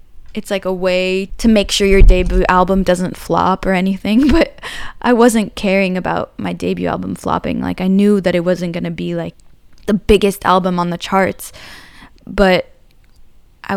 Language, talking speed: English, 180 wpm